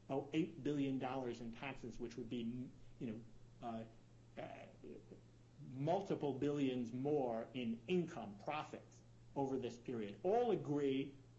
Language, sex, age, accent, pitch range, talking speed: English, male, 50-69, American, 120-150 Hz, 110 wpm